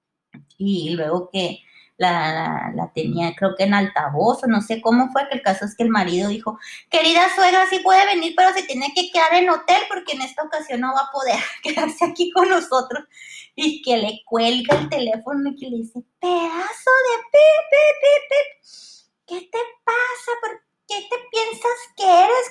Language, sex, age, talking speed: Spanish, female, 20-39, 190 wpm